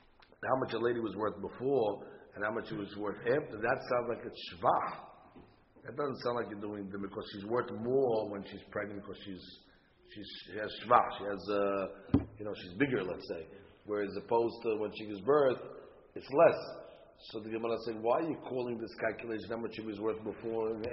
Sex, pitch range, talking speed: male, 100-120 Hz, 210 wpm